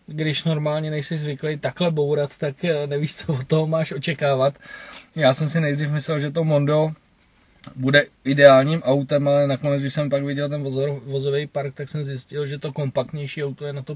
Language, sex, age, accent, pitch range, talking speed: Czech, male, 20-39, native, 135-155 Hz, 185 wpm